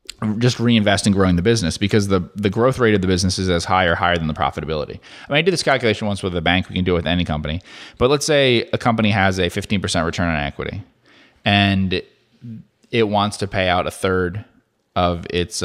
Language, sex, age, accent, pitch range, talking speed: English, male, 30-49, American, 90-115 Hz, 230 wpm